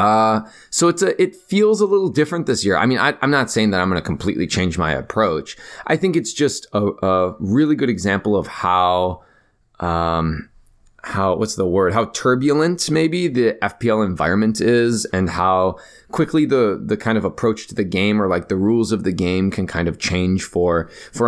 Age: 20-39